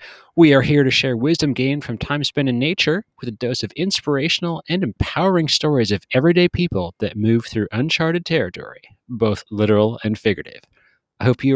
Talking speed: 180 wpm